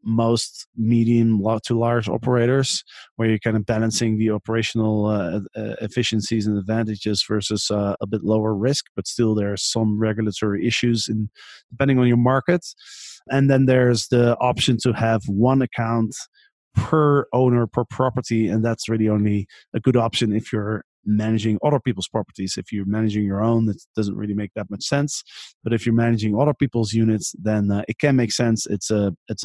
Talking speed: 180 wpm